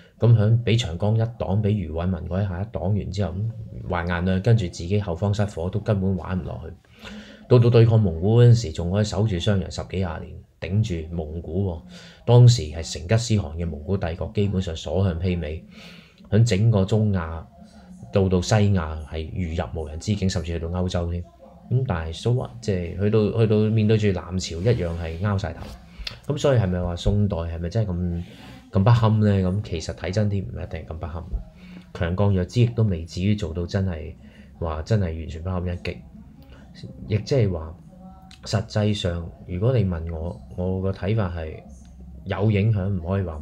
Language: Chinese